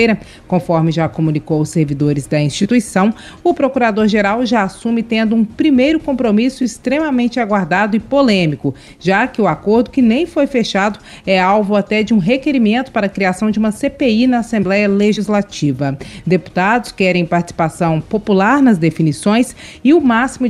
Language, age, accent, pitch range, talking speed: Portuguese, 30-49, Brazilian, 180-245 Hz, 150 wpm